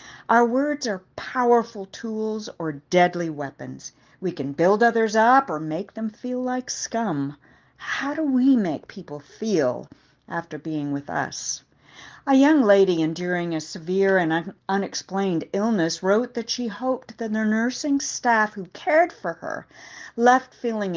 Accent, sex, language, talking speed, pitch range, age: American, female, English, 150 wpm, 180-245 Hz, 50-69